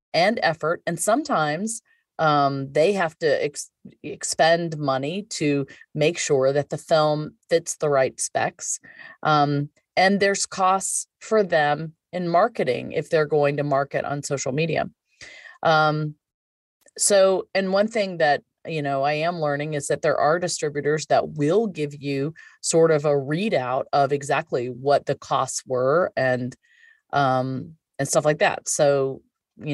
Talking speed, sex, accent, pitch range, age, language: 150 wpm, female, American, 145-210 Hz, 30-49, English